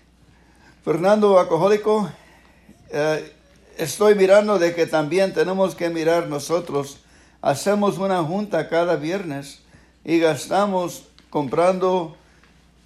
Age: 60-79